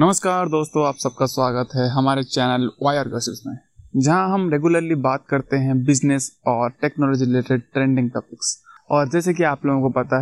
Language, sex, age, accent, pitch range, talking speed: Hindi, male, 20-39, native, 135-165 Hz, 175 wpm